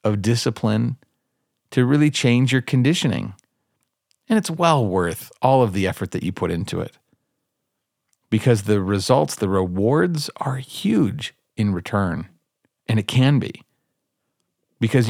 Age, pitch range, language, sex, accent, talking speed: 40-59, 95-130 Hz, English, male, American, 135 wpm